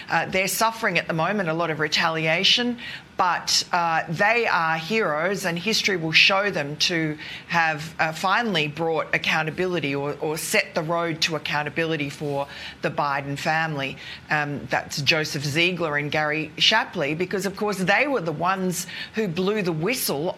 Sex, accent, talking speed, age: female, Australian, 160 wpm, 40-59